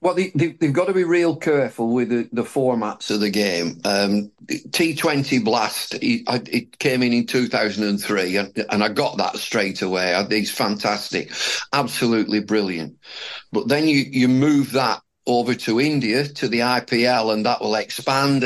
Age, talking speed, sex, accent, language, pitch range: 50-69, 150 wpm, male, British, English, 110-140 Hz